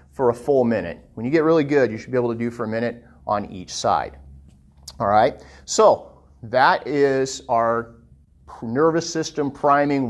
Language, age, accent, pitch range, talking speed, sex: English, 50-69, American, 120-160 Hz, 170 wpm, male